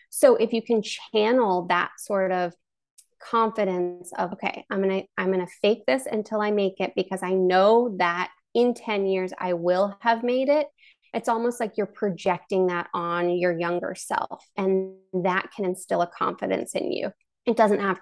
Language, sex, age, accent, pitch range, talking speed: English, female, 20-39, American, 180-220 Hz, 185 wpm